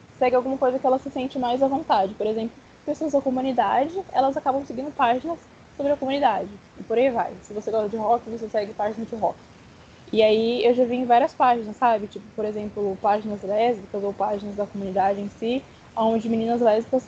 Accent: Brazilian